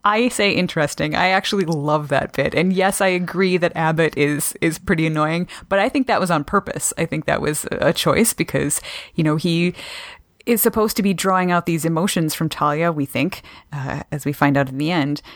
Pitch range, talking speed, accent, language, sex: 155-190 Hz, 215 wpm, American, English, female